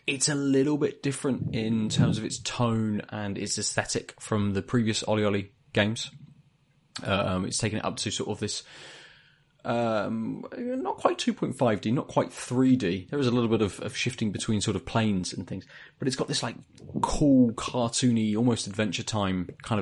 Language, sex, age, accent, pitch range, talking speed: English, male, 20-39, British, 100-130 Hz, 185 wpm